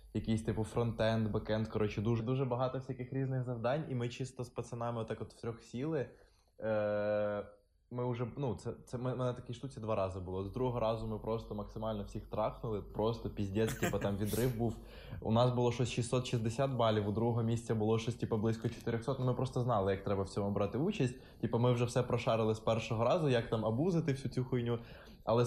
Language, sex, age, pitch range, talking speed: Russian, male, 20-39, 100-120 Hz, 205 wpm